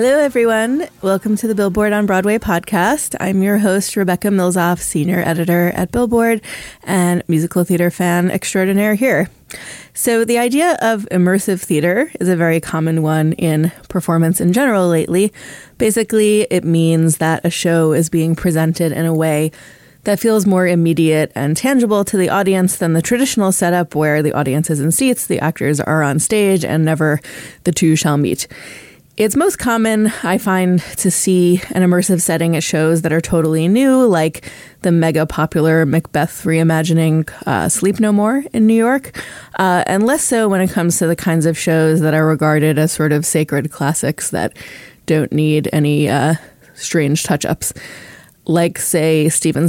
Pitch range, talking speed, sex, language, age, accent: 160-195 Hz, 170 wpm, female, English, 20-39, American